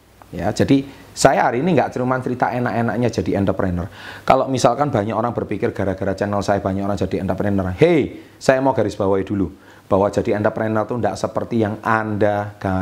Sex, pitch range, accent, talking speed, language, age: male, 95-120 Hz, native, 170 wpm, Indonesian, 30-49